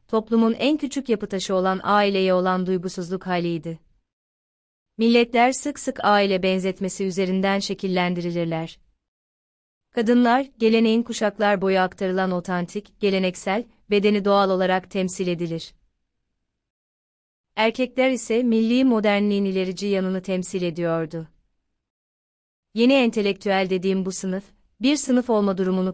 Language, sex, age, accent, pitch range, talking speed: Turkish, female, 30-49, native, 185-220 Hz, 105 wpm